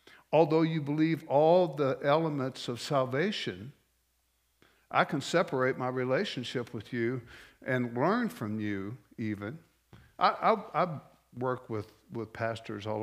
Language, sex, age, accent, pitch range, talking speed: English, male, 60-79, American, 110-155 Hz, 130 wpm